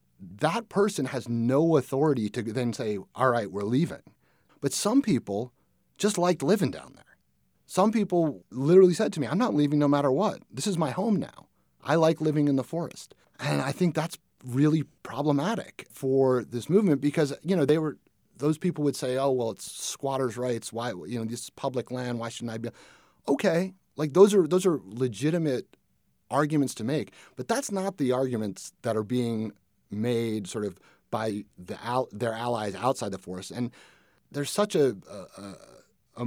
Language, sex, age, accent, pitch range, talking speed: English, male, 30-49, American, 115-155 Hz, 185 wpm